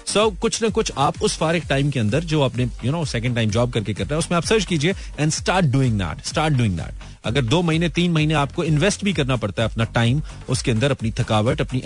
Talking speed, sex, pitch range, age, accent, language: 235 wpm, male, 120-170 Hz, 30-49, native, Hindi